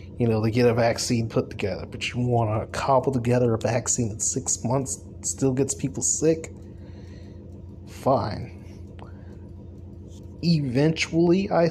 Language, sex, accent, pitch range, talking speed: English, male, American, 95-130 Hz, 135 wpm